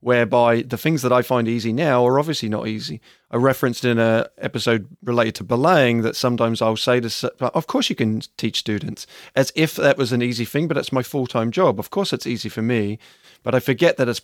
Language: English